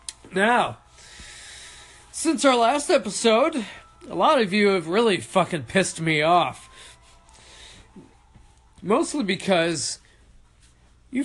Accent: American